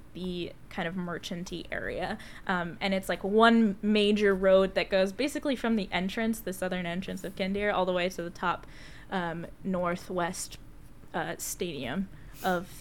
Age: 20-39